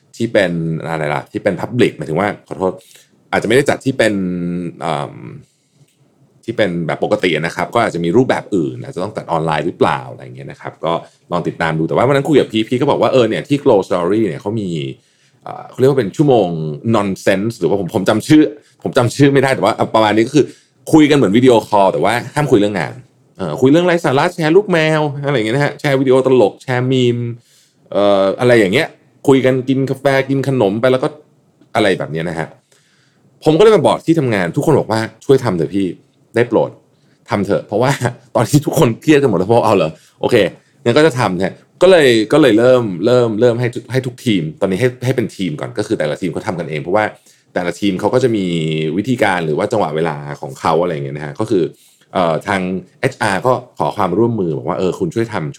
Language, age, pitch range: Thai, 30-49, 95-140 Hz